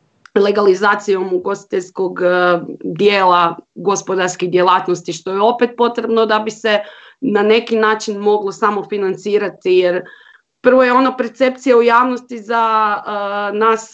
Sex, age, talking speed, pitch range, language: female, 30-49, 110 wpm, 200-250 Hz, Croatian